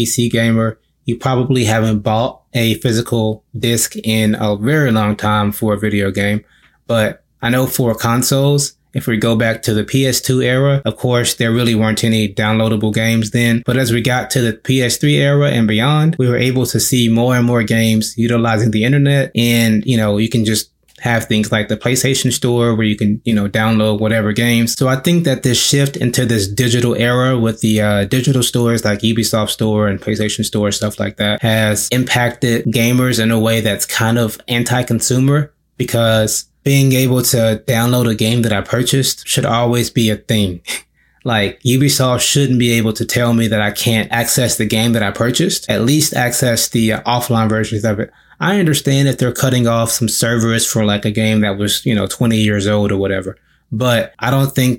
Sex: male